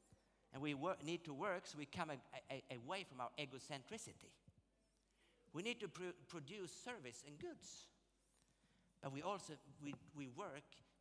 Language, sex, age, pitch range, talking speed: Swedish, male, 50-69, 130-175 Hz, 165 wpm